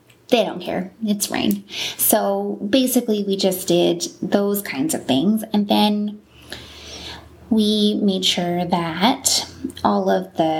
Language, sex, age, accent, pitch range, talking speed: English, female, 20-39, American, 175-215 Hz, 130 wpm